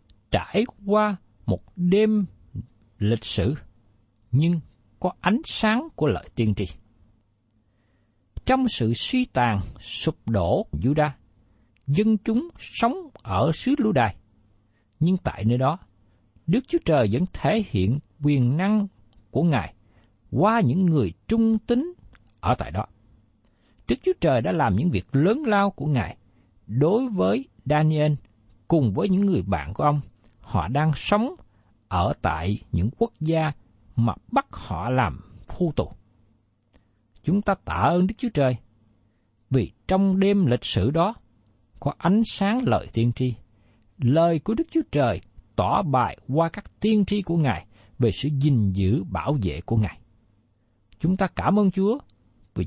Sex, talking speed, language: male, 150 wpm, Vietnamese